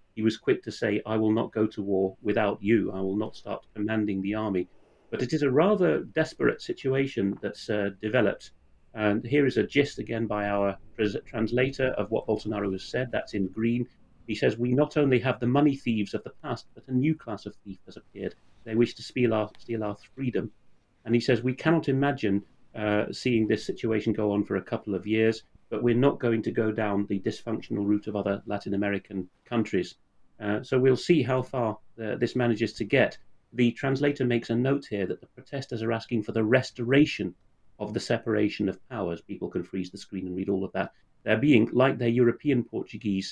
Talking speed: 210 wpm